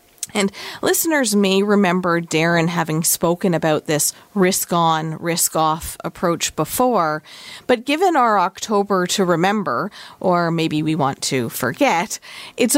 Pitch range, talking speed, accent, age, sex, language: 170-230 Hz, 120 wpm, American, 40-59, female, English